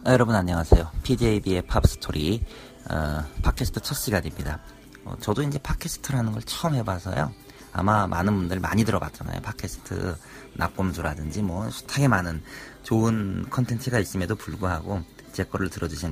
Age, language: 40-59, Korean